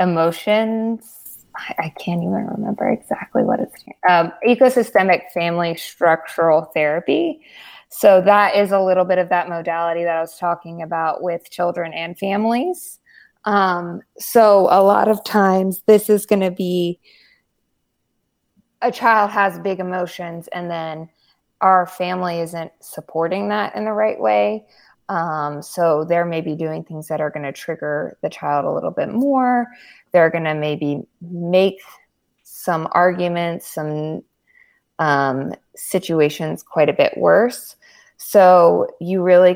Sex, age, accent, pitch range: female, 20-39, American, 160-200 Hz